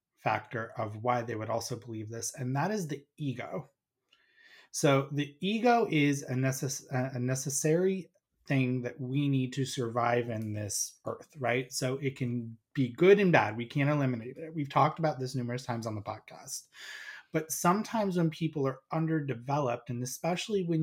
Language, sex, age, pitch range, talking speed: English, male, 30-49, 120-155 Hz, 170 wpm